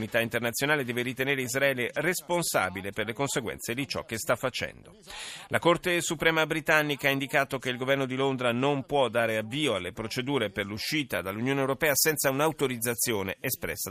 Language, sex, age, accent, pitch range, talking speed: Italian, male, 40-59, native, 115-155 Hz, 165 wpm